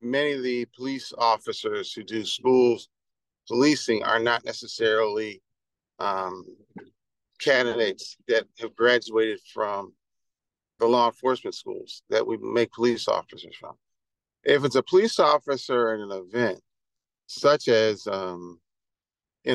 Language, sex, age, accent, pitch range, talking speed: English, male, 40-59, American, 115-140 Hz, 125 wpm